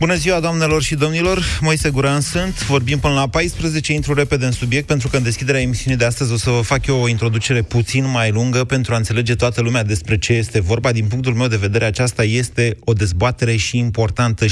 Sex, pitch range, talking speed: male, 110-140 Hz, 220 wpm